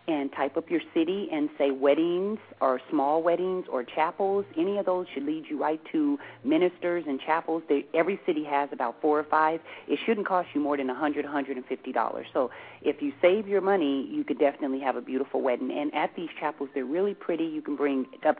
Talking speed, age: 210 wpm, 40-59